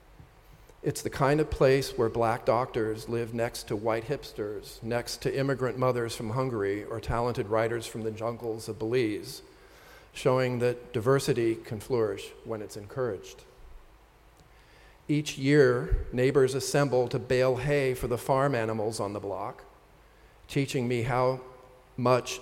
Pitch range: 115-130 Hz